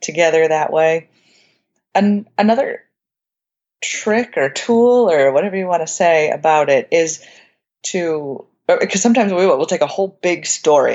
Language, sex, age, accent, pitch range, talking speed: English, female, 30-49, American, 155-195 Hz, 150 wpm